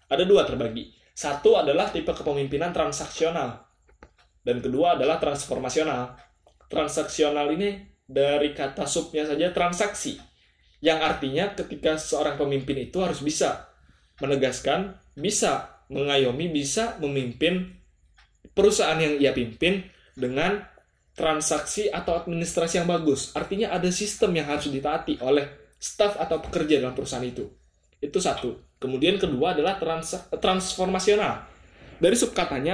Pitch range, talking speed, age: 135-180 Hz, 115 wpm, 20-39